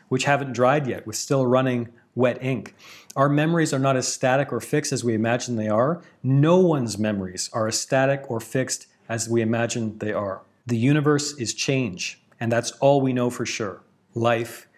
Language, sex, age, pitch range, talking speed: English, male, 40-59, 120-150 Hz, 190 wpm